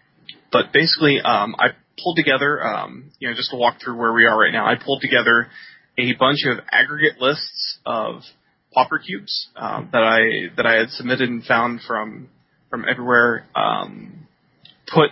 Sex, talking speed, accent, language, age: male, 170 wpm, American, English, 20-39